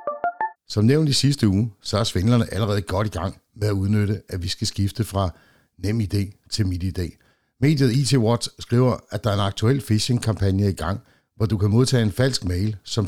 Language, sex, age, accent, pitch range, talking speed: Danish, male, 60-79, native, 100-120 Hz, 200 wpm